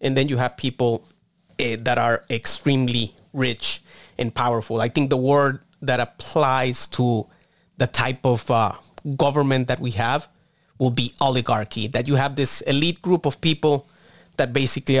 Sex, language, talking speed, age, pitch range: male, English, 160 wpm, 30-49, 120-140 Hz